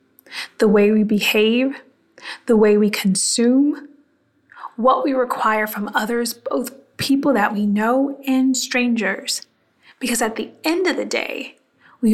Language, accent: English, American